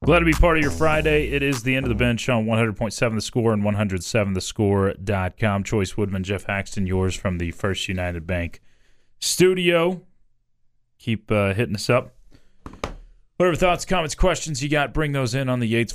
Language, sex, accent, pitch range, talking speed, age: English, male, American, 95-130 Hz, 180 wpm, 30-49